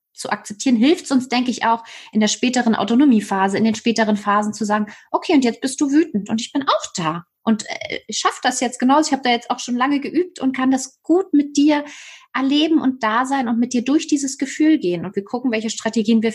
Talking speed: 240 wpm